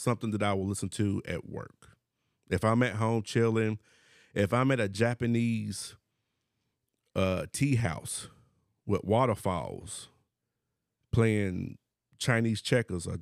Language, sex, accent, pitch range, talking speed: English, male, American, 105-130 Hz, 125 wpm